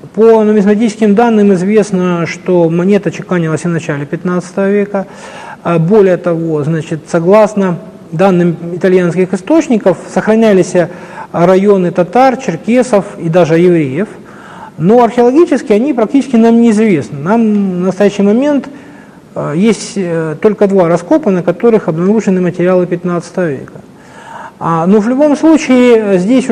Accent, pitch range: native, 175-215 Hz